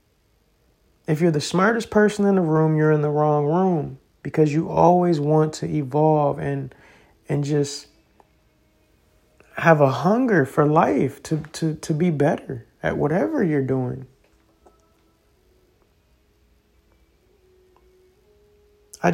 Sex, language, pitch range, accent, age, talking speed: male, English, 140-170 Hz, American, 30-49, 115 wpm